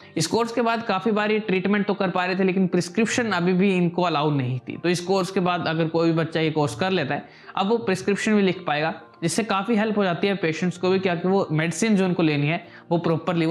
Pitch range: 155-195 Hz